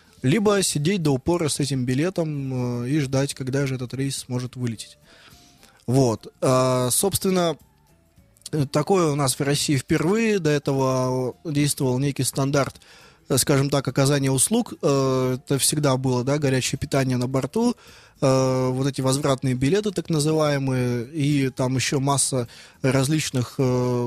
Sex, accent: male, native